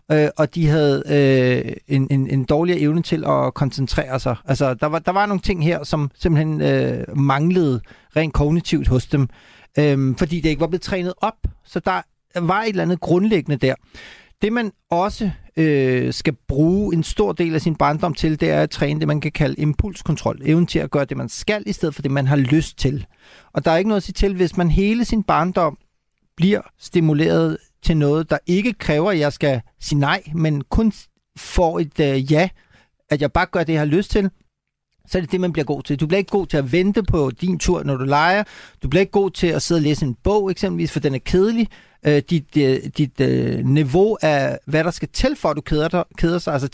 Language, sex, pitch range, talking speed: Danish, male, 145-185 Hz, 220 wpm